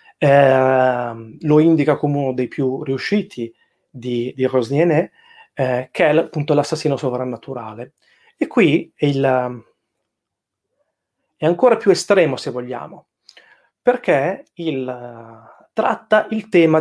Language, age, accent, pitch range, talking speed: Italian, 30-49, native, 135-175 Hz, 115 wpm